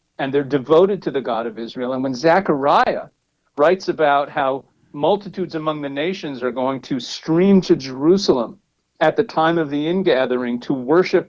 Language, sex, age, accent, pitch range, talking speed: English, male, 50-69, American, 135-165 Hz, 170 wpm